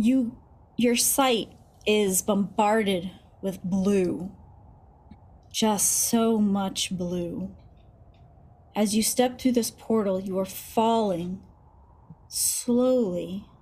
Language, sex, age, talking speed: English, female, 30-49, 95 wpm